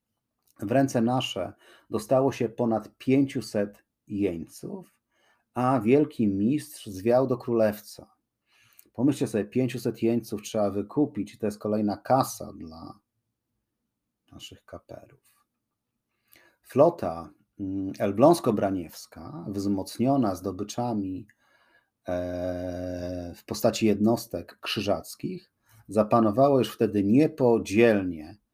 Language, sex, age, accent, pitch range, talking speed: Polish, male, 40-59, native, 100-120 Hz, 80 wpm